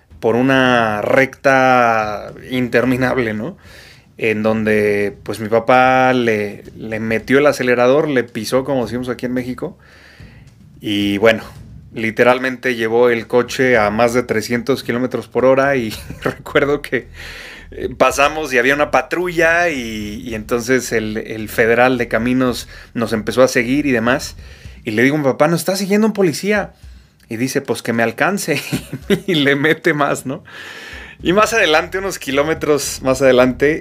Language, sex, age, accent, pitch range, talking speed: Spanish, male, 30-49, Mexican, 115-140 Hz, 155 wpm